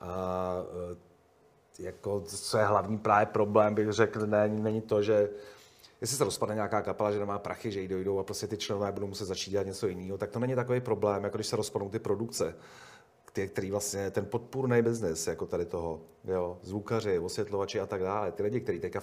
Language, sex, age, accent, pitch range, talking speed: Czech, male, 40-59, native, 100-120 Hz, 200 wpm